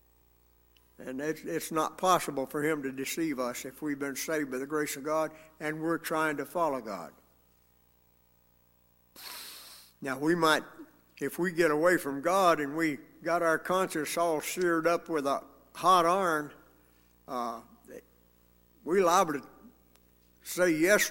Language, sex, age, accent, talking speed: English, male, 60-79, American, 150 wpm